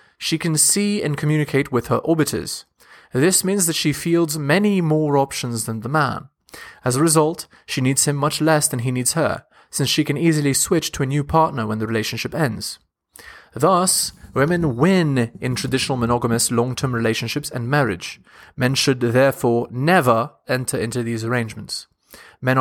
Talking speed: 165 wpm